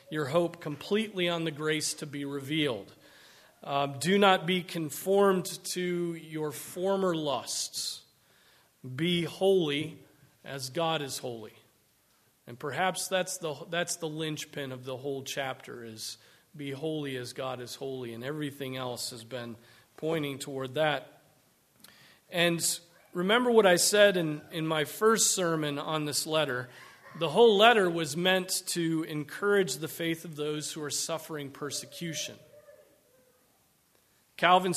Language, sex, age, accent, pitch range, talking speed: English, male, 40-59, American, 140-180 Hz, 135 wpm